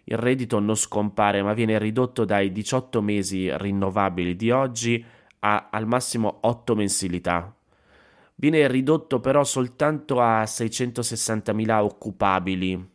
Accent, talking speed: native, 115 wpm